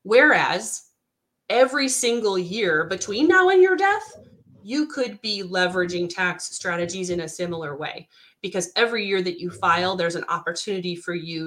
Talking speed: 155 wpm